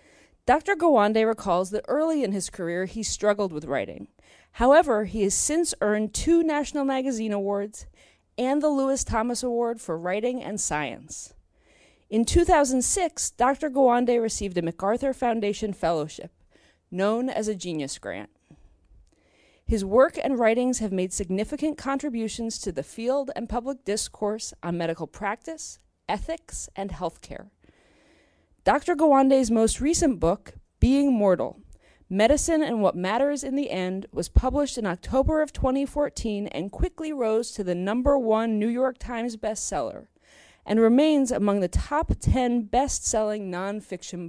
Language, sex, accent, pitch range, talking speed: English, female, American, 200-275 Hz, 140 wpm